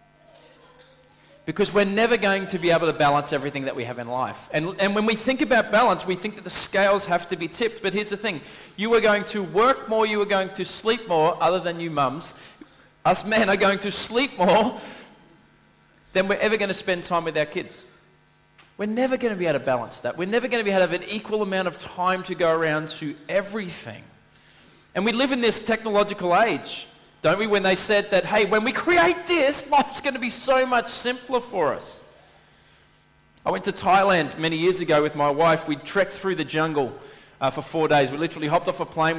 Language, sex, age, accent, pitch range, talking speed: English, male, 30-49, Australian, 150-205 Hz, 225 wpm